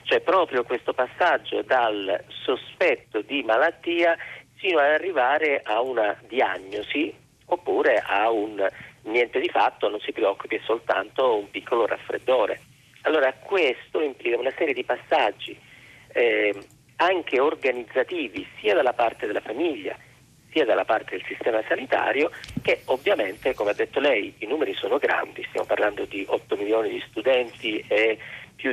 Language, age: Italian, 40-59